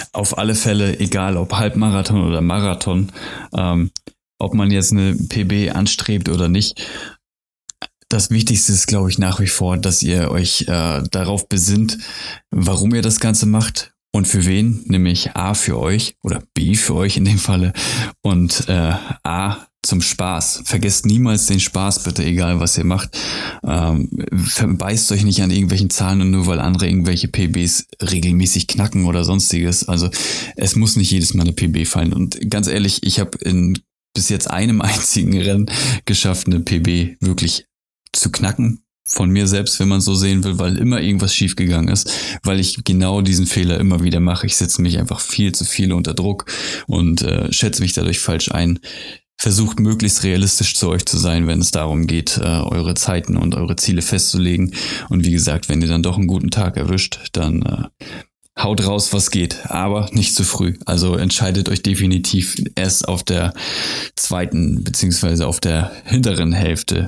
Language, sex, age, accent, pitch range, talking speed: German, male, 20-39, German, 90-105 Hz, 175 wpm